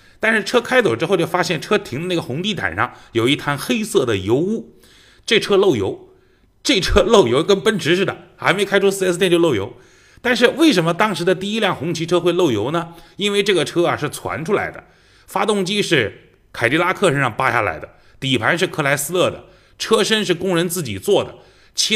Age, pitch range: 30-49, 140-195 Hz